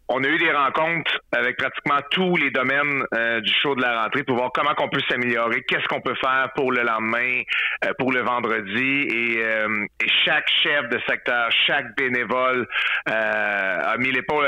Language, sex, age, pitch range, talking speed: French, male, 30-49, 115-135 Hz, 190 wpm